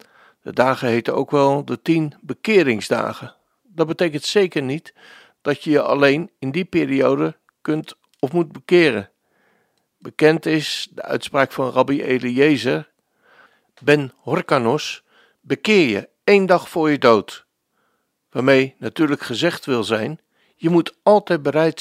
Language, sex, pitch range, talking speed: Dutch, male, 130-175 Hz, 130 wpm